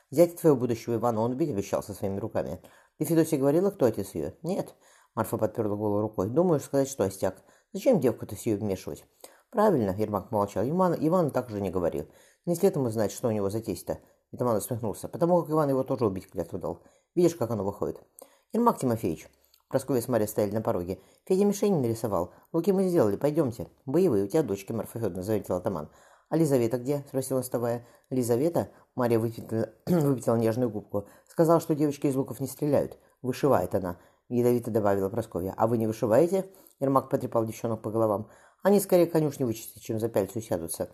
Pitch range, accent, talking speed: 110-145 Hz, native, 180 wpm